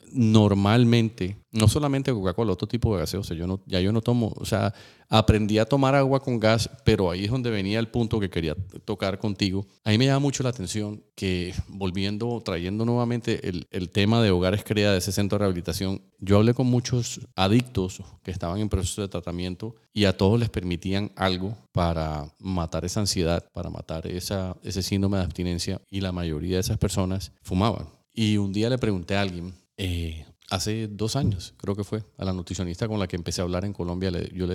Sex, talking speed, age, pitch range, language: male, 200 wpm, 40-59, 90-110 Hz, Spanish